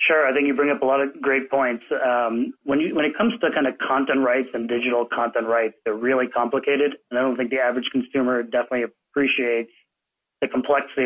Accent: American